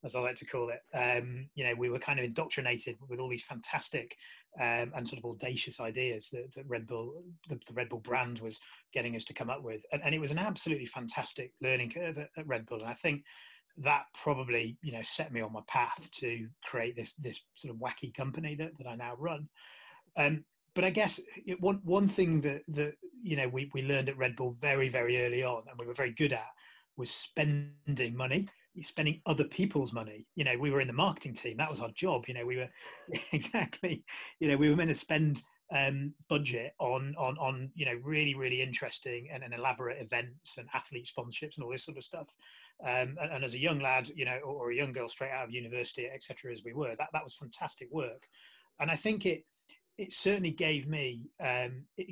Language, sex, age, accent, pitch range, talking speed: English, male, 30-49, British, 125-155 Hz, 225 wpm